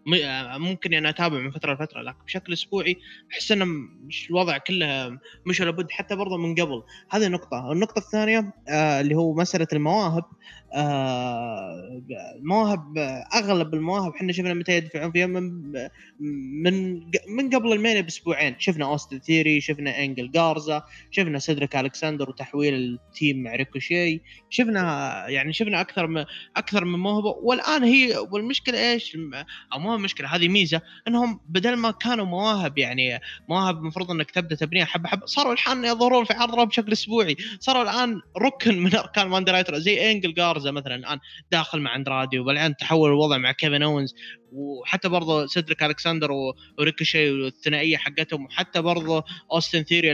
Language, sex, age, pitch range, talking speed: Arabic, male, 20-39, 145-190 Hz, 155 wpm